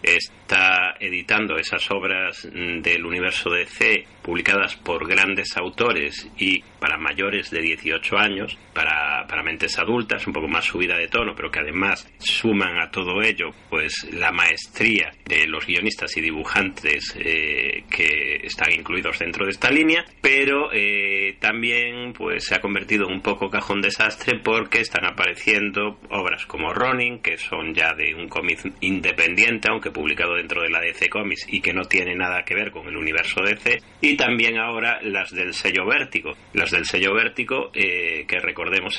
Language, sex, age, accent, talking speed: Spanish, male, 30-49, Spanish, 165 wpm